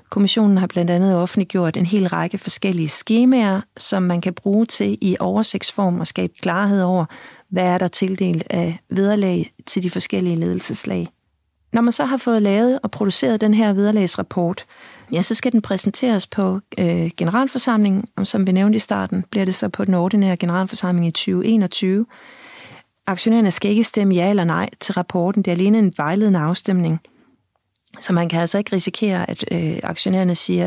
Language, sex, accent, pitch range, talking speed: Danish, female, native, 175-205 Hz, 170 wpm